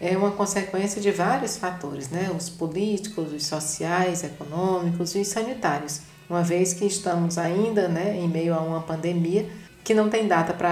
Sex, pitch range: female, 170-205 Hz